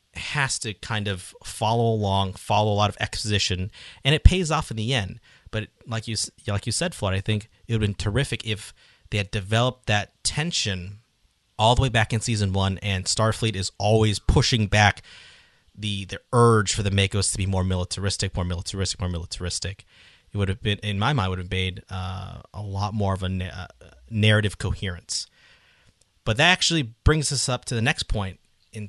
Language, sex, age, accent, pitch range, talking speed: English, male, 30-49, American, 95-120 Hz, 200 wpm